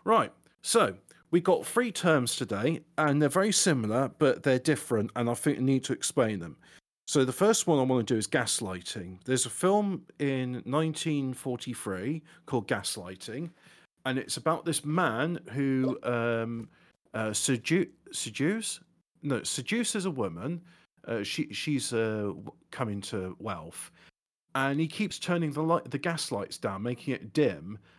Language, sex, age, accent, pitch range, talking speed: English, male, 40-59, British, 120-160 Hz, 155 wpm